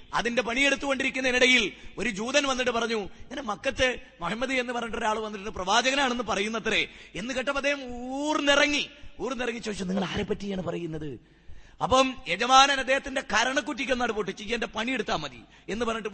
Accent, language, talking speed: native, Malayalam, 125 wpm